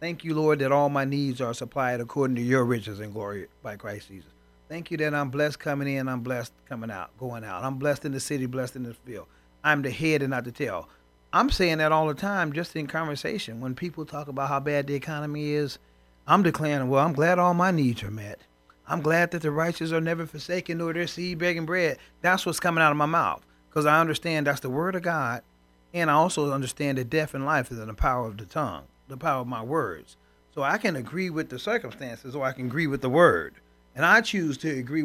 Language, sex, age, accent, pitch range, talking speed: English, male, 40-59, American, 125-165 Hz, 245 wpm